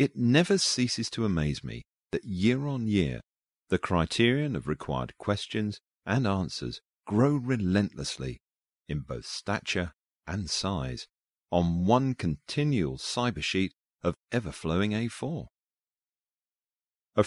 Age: 40-59